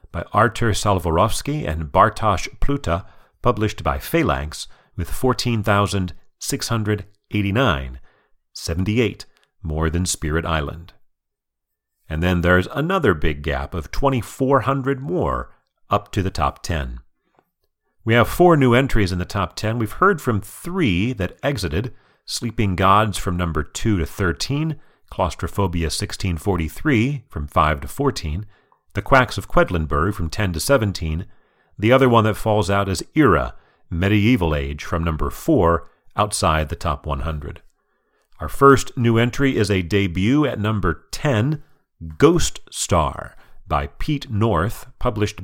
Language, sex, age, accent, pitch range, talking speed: English, male, 40-59, American, 85-120 Hz, 130 wpm